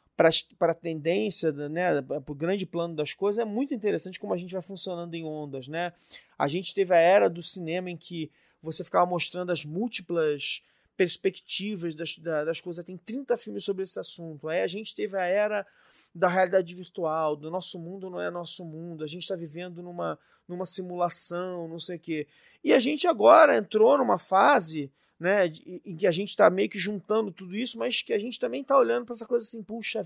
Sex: male